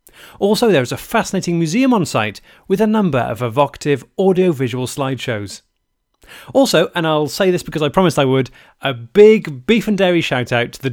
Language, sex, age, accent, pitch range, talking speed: English, male, 30-49, British, 130-200 Hz, 180 wpm